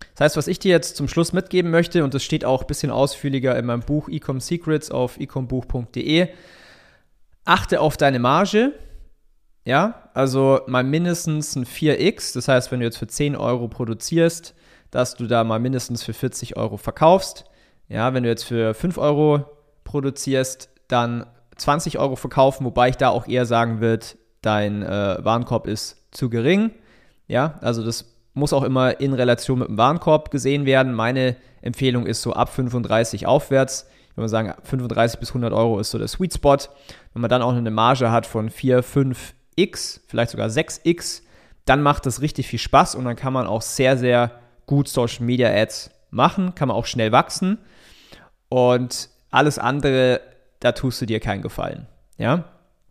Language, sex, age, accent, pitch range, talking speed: German, male, 30-49, German, 115-145 Hz, 175 wpm